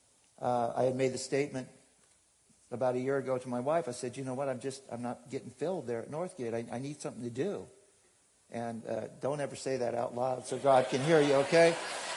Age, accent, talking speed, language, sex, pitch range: 60-79, American, 230 wpm, English, male, 125-140 Hz